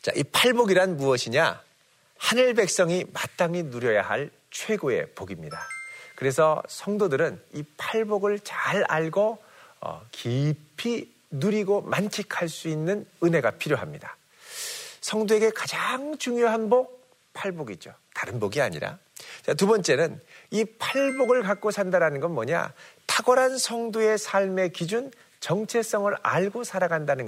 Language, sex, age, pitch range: Korean, male, 40-59, 165-245 Hz